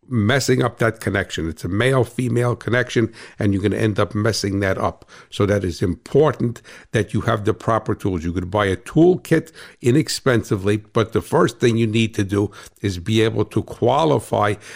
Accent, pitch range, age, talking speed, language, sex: American, 100-120 Hz, 60-79, 185 wpm, English, male